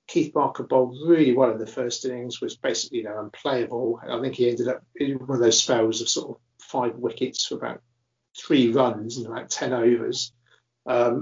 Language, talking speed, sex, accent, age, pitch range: English, 205 wpm, male, British, 50-69, 120-180 Hz